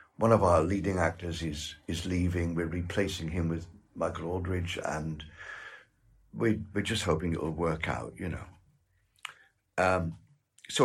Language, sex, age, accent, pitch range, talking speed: English, male, 60-79, British, 85-110 Hz, 150 wpm